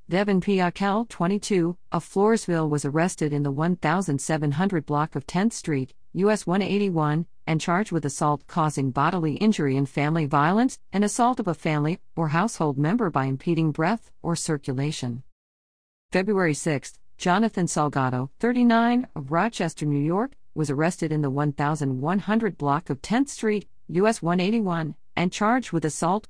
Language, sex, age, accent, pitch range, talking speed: English, female, 50-69, American, 145-195 Hz, 145 wpm